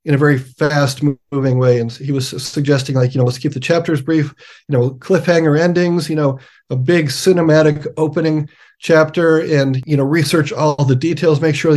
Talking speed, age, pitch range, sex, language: 195 wpm, 40-59, 135-160 Hz, male, English